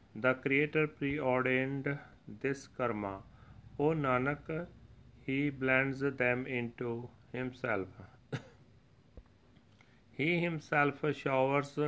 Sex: male